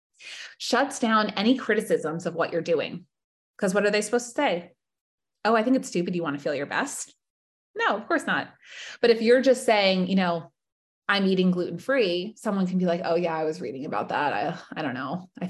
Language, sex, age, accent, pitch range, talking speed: English, female, 20-39, American, 175-230 Hz, 215 wpm